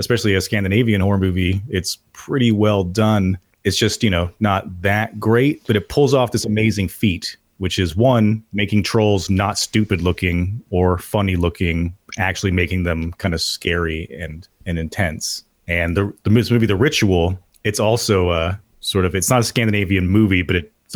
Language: English